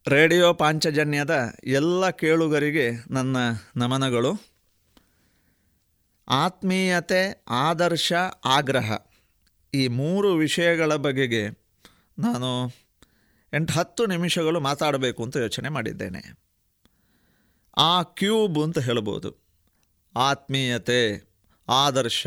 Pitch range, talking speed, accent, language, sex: 120-180 Hz, 75 wpm, native, Kannada, male